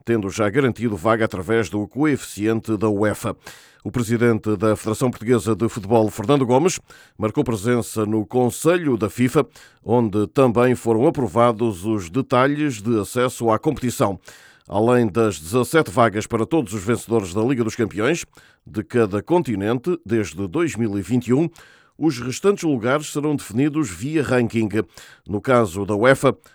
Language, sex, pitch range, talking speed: Portuguese, male, 110-130 Hz, 140 wpm